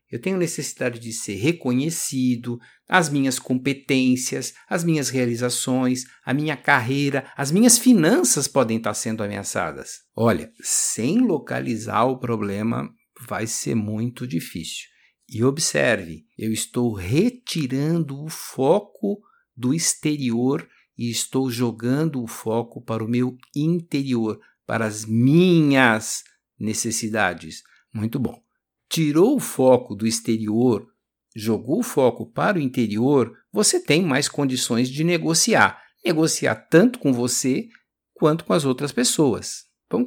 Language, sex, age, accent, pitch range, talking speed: Portuguese, male, 60-79, Brazilian, 120-150 Hz, 125 wpm